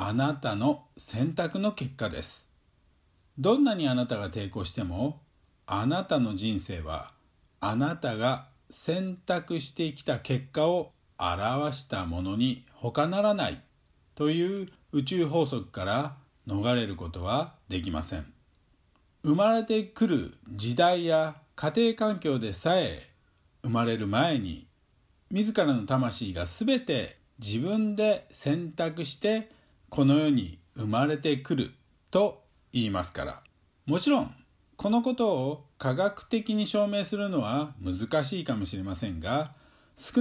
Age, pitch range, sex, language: 50-69, 115-185 Hz, male, Japanese